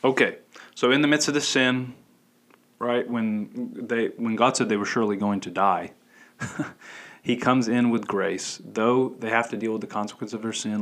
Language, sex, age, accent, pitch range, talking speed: English, male, 30-49, American, 110-130 Hz, 200 wpm